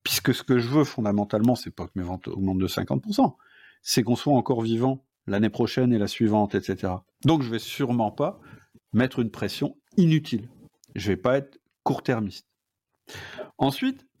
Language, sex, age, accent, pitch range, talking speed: French, male, 50-69, French, 110-145 Hz, 180 wpm